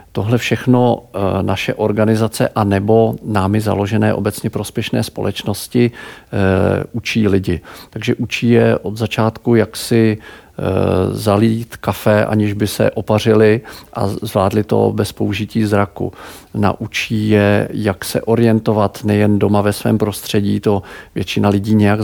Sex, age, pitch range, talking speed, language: male, 50-69, 100-110 Hz, 125 wpm, Czech